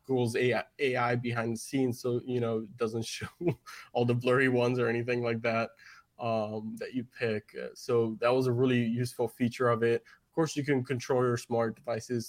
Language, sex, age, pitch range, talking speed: English, male, 20-39, 115-125 Hz, 195 wpm